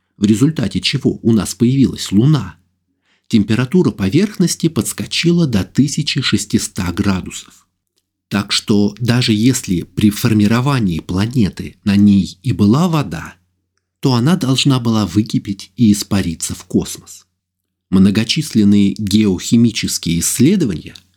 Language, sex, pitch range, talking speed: Russian, male, 90-125 Hz, 105 wpm